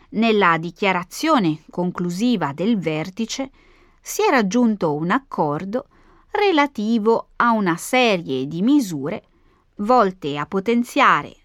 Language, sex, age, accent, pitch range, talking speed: Italian, female, 30-49, native, 175-270 Hz, 100 wpm